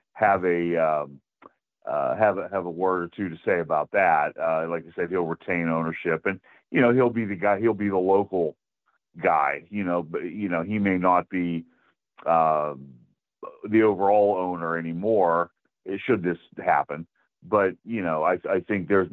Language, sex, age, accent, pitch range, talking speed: English, male, 40-59, American, 85-105 Hz, 180 wpm